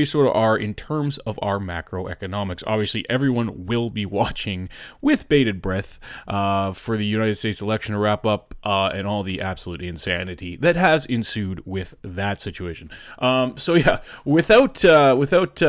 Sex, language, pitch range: male, English, 105-140 Hz